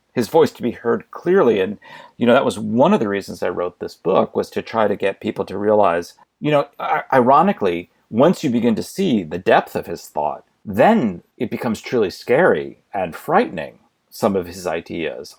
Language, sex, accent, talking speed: English, male, American, 200 wpm